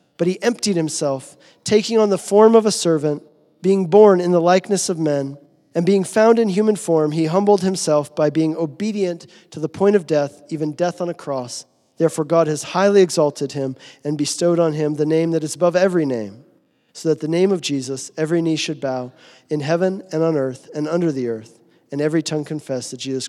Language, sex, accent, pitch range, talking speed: English, male, American, 140-180 Hz, 210 wpm